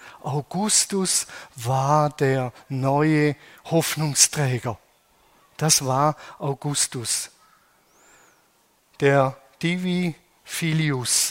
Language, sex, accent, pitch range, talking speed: German, male, German, 140-180 Hz, 60 wpm